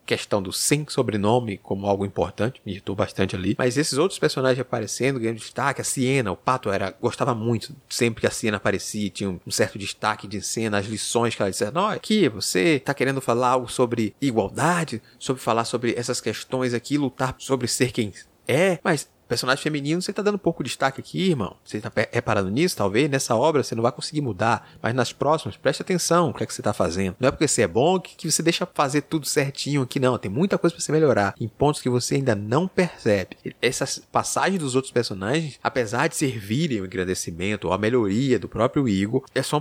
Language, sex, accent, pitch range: Portuguese, male, Brazilian, 115-155 Hz